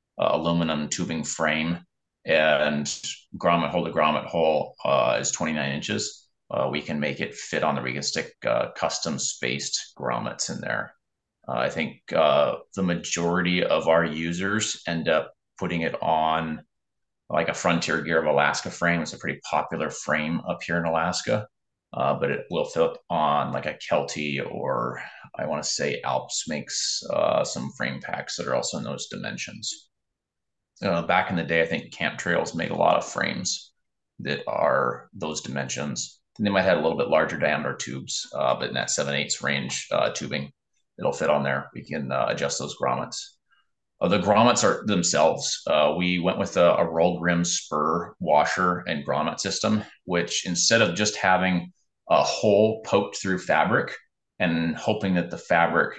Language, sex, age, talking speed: English, male, 30-49, 175 wpm